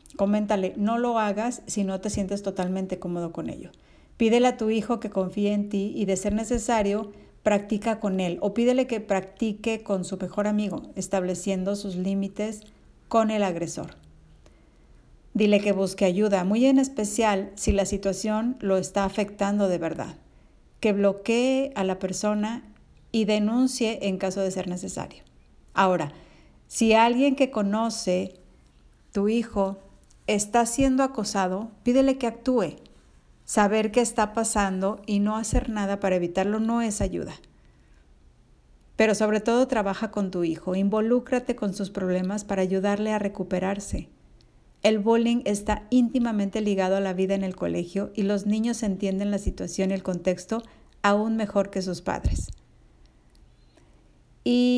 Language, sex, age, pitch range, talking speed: Spanish, female, 50-69, 190-225 Hz, 150 wpm